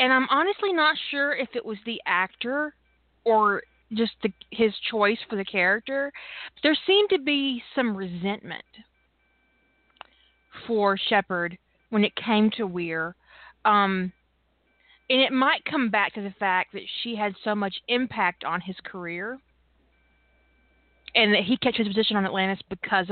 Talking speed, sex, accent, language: 150 wpm, female, American, English